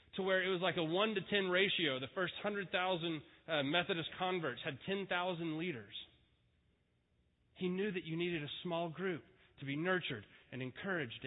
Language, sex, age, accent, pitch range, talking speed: English, male, 30-49, American, 135-185 Hz, 165 wpm